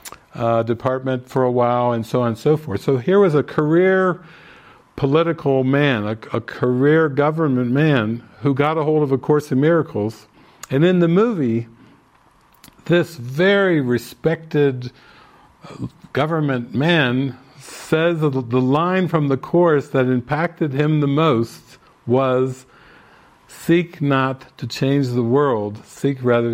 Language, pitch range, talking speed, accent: English, 125-150 Hz, 140 wpm, American